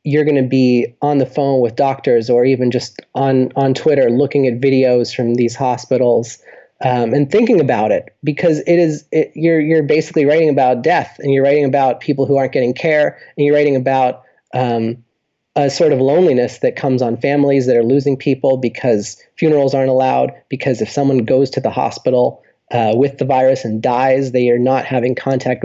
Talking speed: 195 wpm